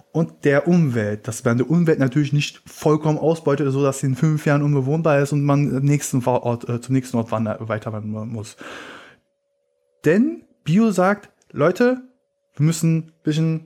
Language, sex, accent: German, male, German